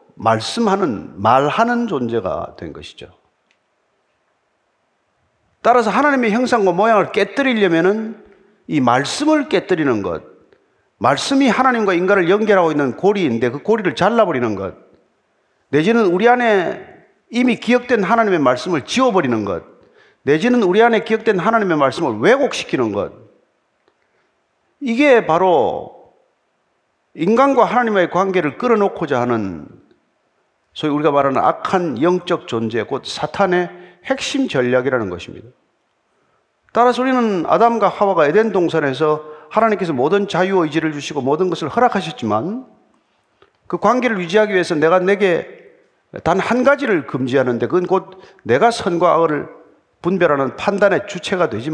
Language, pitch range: Korean, 165-245 Hz